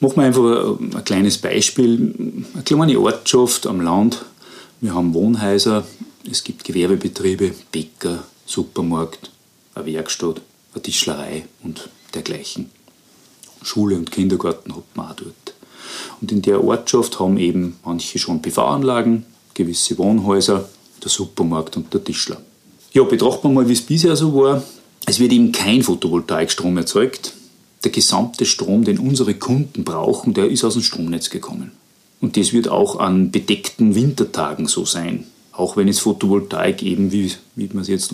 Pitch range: 95-130 Hz